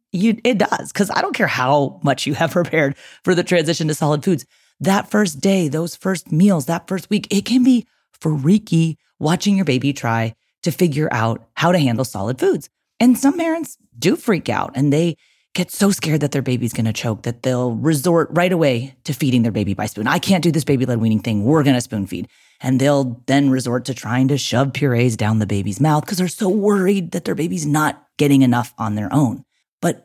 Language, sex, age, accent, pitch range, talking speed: English, female, 30-49, American, 130-185 Hz, 215 wpm